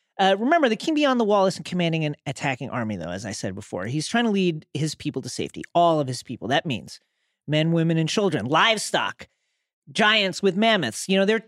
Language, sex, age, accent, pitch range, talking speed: English, male, 40-59, American, 135-205 Hz, 220 wpm